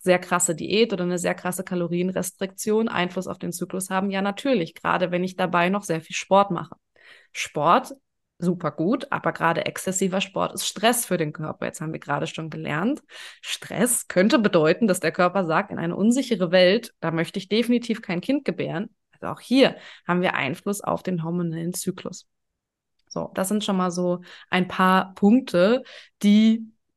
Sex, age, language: female, 20-39, German